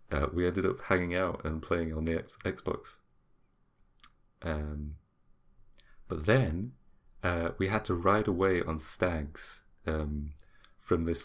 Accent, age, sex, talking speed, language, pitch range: British, 30-49, male, 140 wpm, English, 75-90 Hz